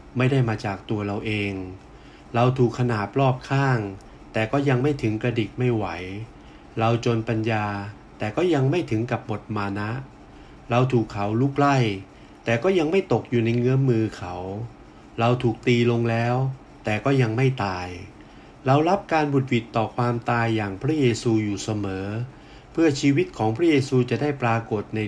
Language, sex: Thai, male